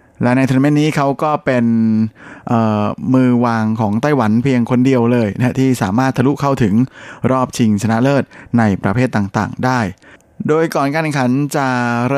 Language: Thai